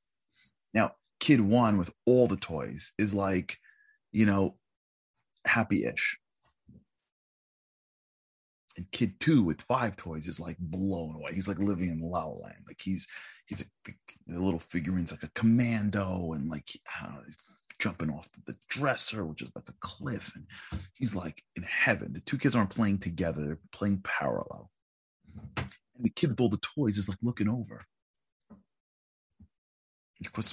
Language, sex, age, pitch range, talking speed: English, male, 30-49, 85-105 Hz, 155 wpm